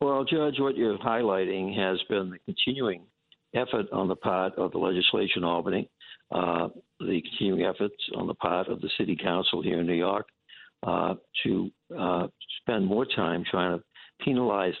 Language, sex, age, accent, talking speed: English, male, 60-79, American, 170 wpm